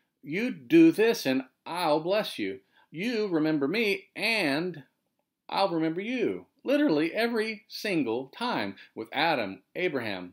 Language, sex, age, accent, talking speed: English, male, 50-69, American, 120 wpm